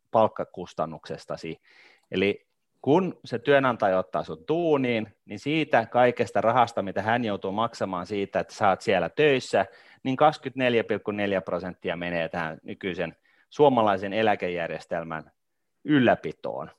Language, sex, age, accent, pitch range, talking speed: Finnish, male, 30-49, native, 100-140 Hz, 105 wpm